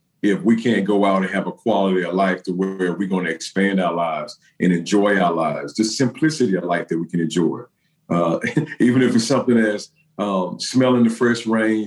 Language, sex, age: English, male, 50-69